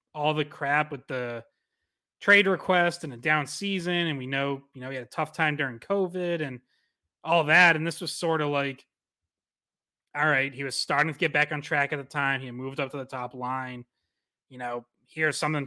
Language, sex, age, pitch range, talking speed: English, male, 20-39, 130-155 Hz, 220 wpm